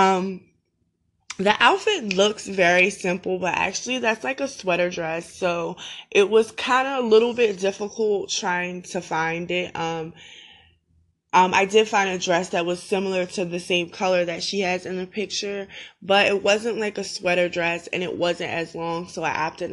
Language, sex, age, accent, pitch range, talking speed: English, female, 20-39, American, 175-205 Hz, 185 wpm